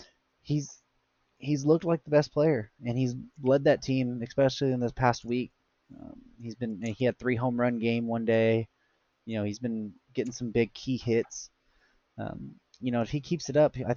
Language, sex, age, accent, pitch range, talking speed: English, male, 20-39, American, 110-130 Hz, 200 wpm